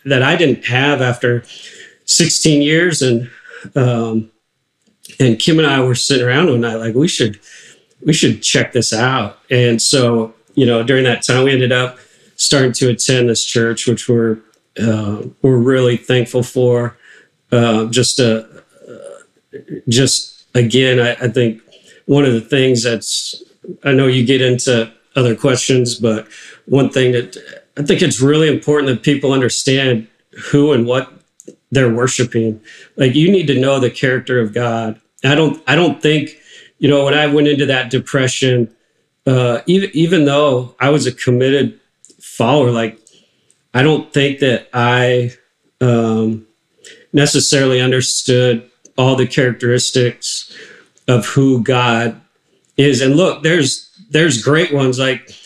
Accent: American